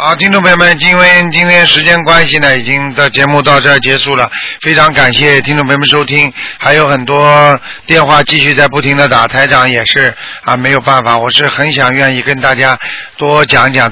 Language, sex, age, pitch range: Chinese, male, 50-69, 130-150 Hz